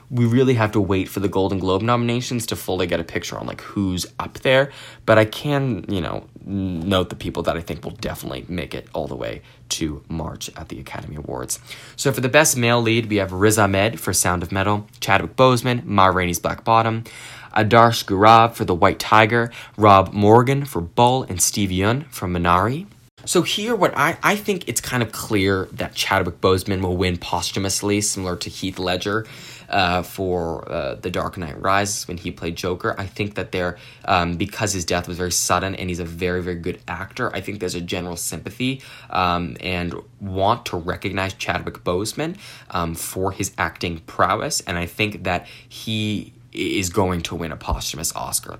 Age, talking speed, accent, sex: 20-39, 195 wpm, American, male